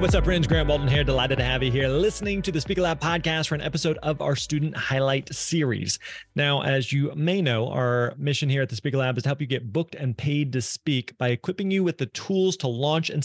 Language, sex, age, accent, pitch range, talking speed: English, male, 30-49, American, 130-165 Hz, 245 wpm